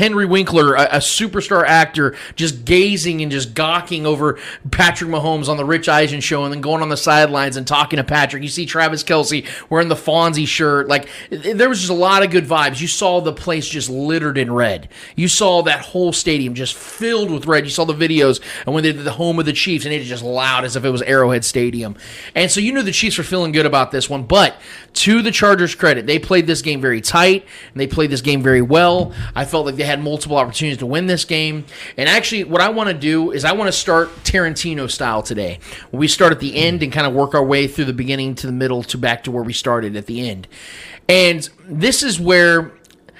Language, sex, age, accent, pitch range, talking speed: English, male, 30-49, American, 135-170 Hz, 240 wpm